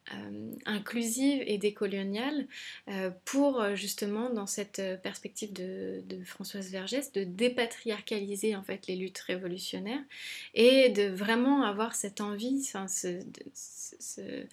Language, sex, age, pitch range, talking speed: French, female, 20-39, 190-230 Hz, 120 wpm